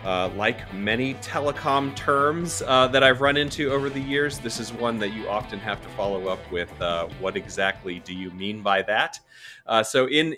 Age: 30-49